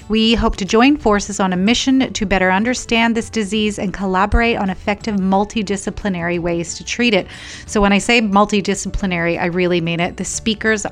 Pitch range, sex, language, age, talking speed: 185-230 Hz, female, English, 30-49, 180 wpm